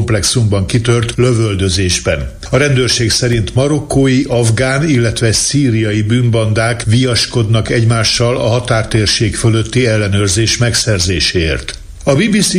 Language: Hungarian